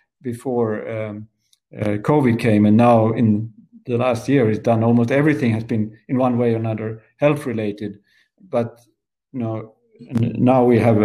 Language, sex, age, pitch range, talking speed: English, male, 50-69, 110-135 Hz, 150 wpm